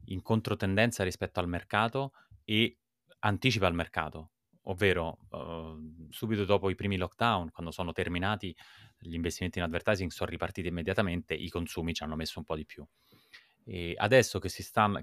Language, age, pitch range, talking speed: Italian, 20-39, 80-100 Hz, 160 wpm